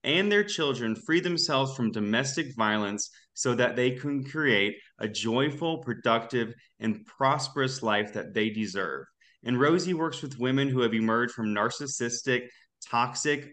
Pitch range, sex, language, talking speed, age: 115-140 Hz, male, English, 145 wpm, 20-39